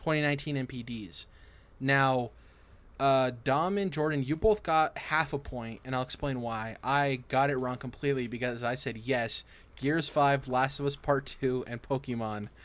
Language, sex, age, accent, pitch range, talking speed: English, male, 20-39, American, 115-140 Hz, 165 wpm